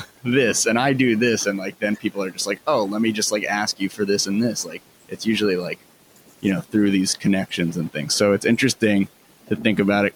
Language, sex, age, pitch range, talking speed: English, male, 30-49, 95-115 Hz, 240 wpm